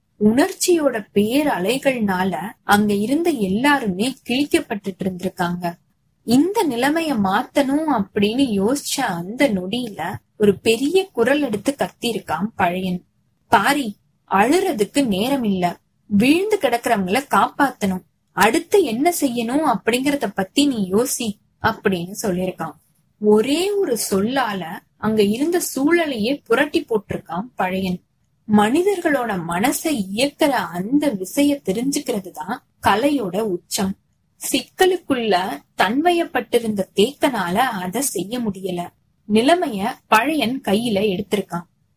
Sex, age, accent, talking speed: female, 20-39, native, 90 wpm